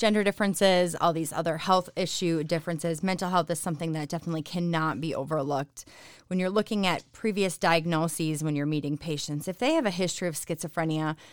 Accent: American